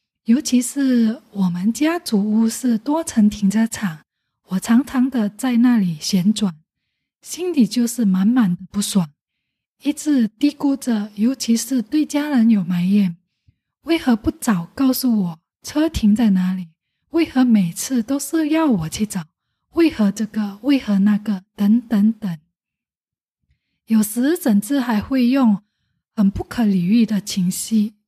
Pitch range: 200-265 Hz